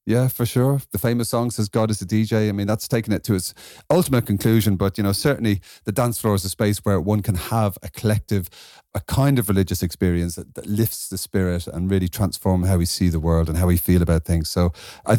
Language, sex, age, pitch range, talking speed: English, male, 30-49, 95-120 Hz, 245 wpm